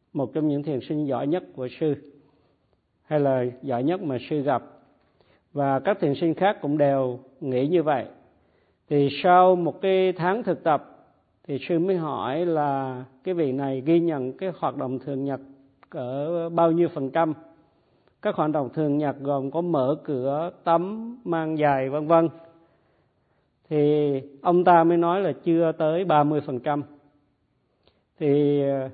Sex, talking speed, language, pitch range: male, 165 wpm, Vietnamese, 135-170 Hz